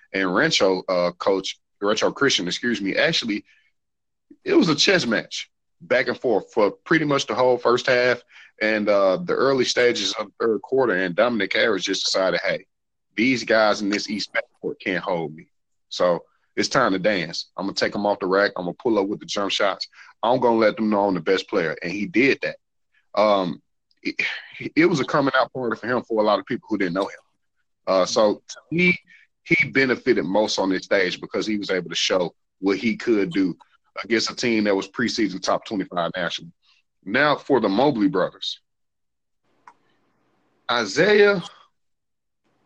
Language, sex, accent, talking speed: English, male, American, 190 wpm